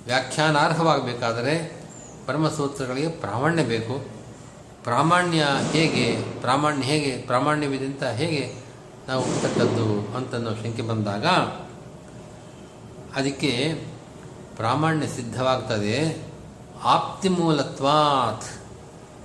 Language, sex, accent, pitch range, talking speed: Kannada, male, native, 125-155 Hz, 60 wpm